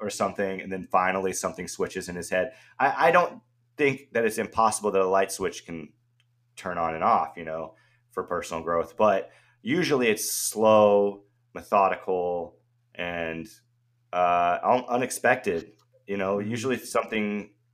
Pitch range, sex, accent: 90-120 Hz, male, American